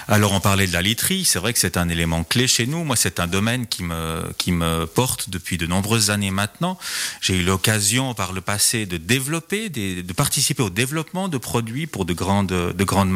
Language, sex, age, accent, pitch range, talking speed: French, male, 30-49, French, 95-130 Hz, 225 wpm